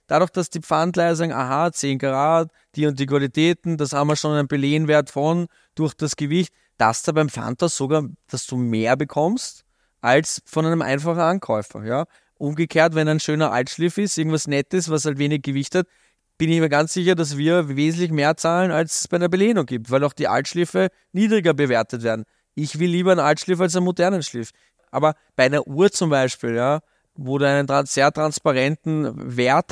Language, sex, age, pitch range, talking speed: English, male, 20-39, 140-175 Hz, 190 wpm